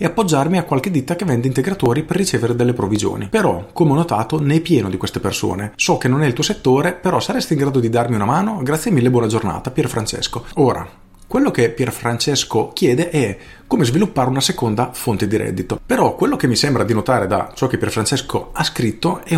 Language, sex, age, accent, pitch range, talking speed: Italian, male, 40-59, native, 105-140 Hz, 215 wpm